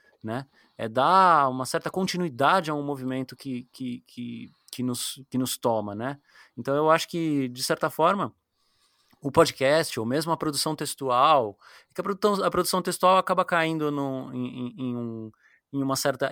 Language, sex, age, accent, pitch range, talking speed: Portuguese, male, 20-39, Brazilian, 130-180 Hz, 175 wpm